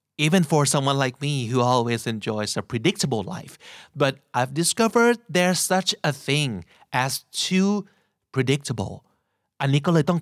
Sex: male